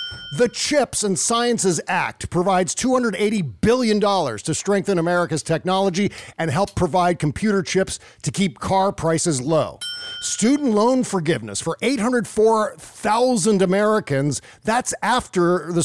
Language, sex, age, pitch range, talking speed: English, male, 50-69, 155-210 Hz, 115 wpm